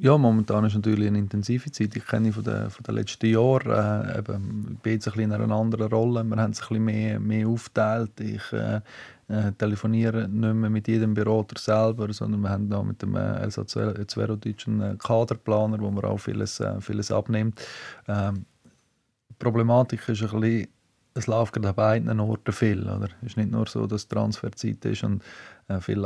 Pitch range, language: 105-110 Hz, German